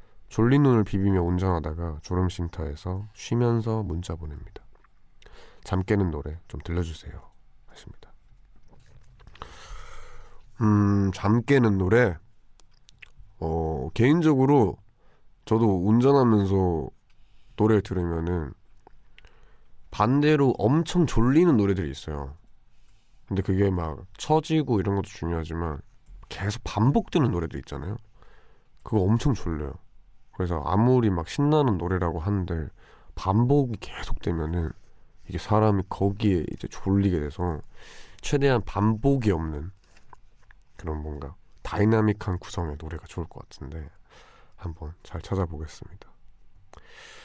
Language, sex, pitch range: Korean, male, 85-115 Hz